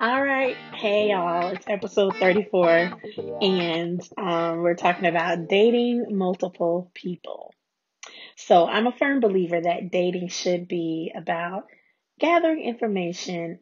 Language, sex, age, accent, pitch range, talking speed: English, female, 20-39, American, 175-220 Hz, 120 wpm